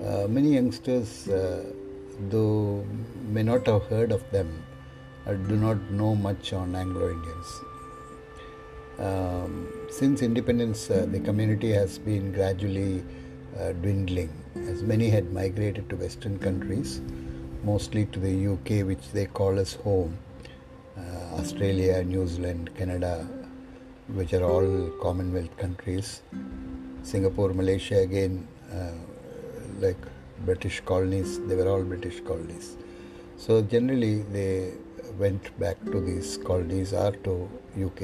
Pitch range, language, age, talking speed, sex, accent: 90-110 Hz, English, 60-79, 125 wpm, male, Indian